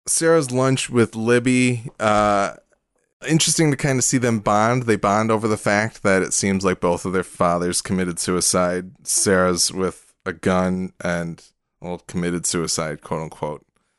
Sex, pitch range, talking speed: male, 90-120 Hz, 155 wpm